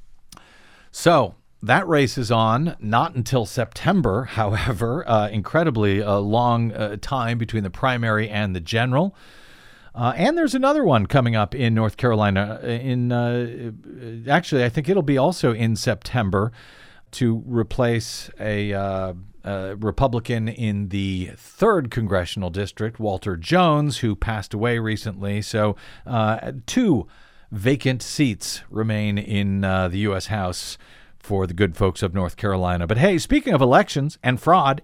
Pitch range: 105-150 Hz